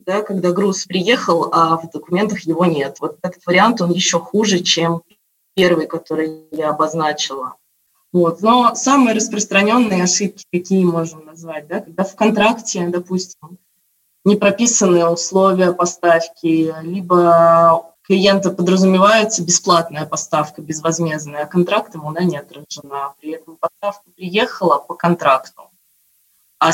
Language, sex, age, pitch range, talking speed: Russian, female, 20-39, 170-205 Hz, 125 wpm